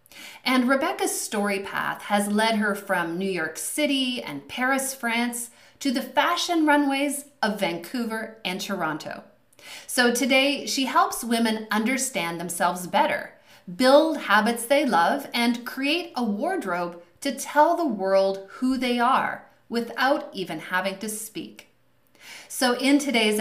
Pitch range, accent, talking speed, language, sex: 195-280 Hz, American, 135 wpm, English, female